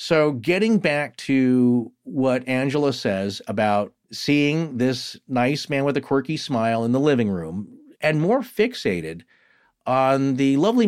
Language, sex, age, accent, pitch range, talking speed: English, male, 40-59, American, 110-155 Hz, 145 wpm